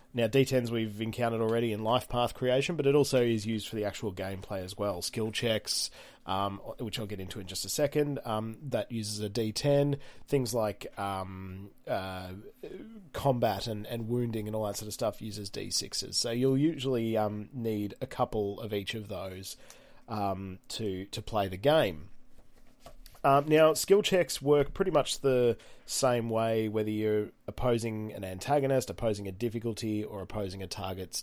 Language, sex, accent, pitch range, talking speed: English, male, Australian, 105-125 Hz, 175 wpm